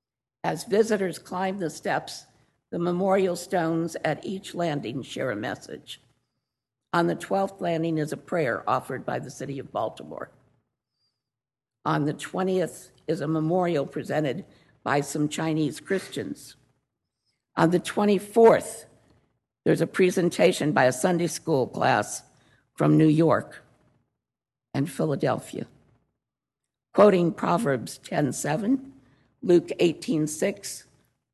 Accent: American